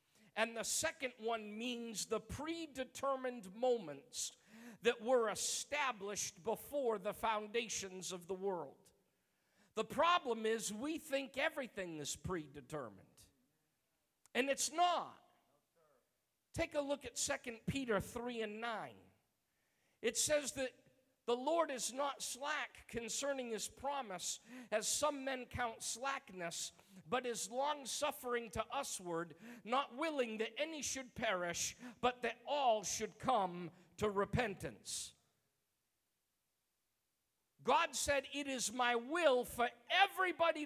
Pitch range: 205-275 Hz